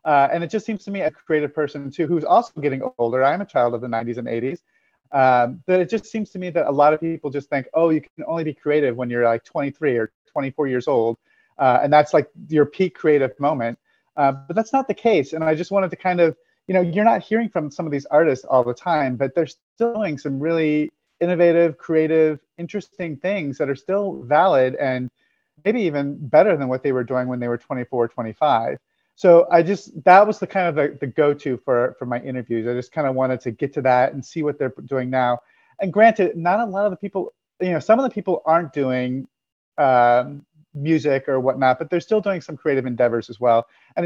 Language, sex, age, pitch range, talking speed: English, male, 30-49, 125-170 Hz, 235 wpm